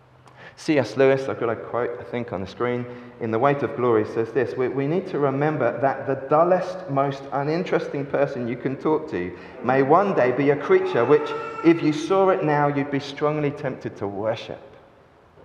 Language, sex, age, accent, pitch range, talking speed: English, male, 40-59, British, 120-165 Hz, 195 wpm